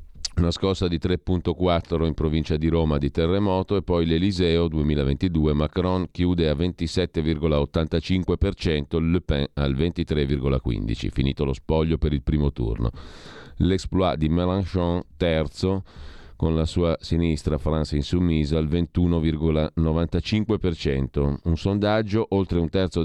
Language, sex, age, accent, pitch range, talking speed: Italian, male, 40-59, native, 75-90 Hz, 120 wpm